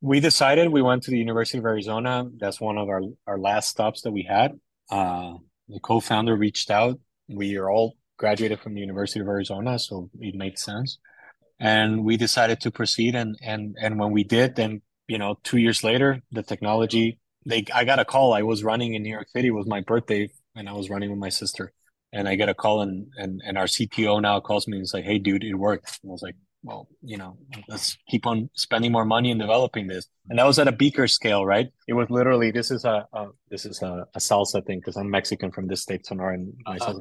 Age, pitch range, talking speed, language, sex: 20-39, 100-120 Hz, 235 wpm, English, male